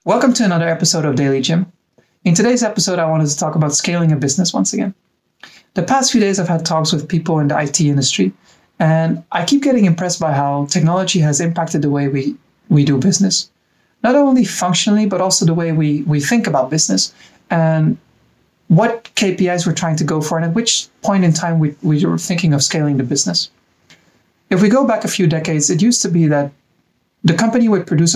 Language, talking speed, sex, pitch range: English, 210 wpm, male, 150-195 Hz